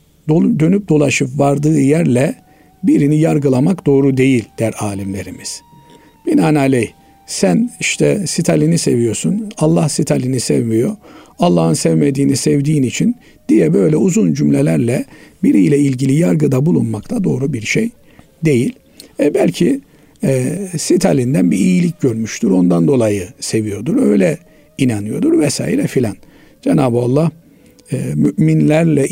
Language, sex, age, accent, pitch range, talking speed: Turkish, male, 50-69, native, 115-155 Hz, 105 wpm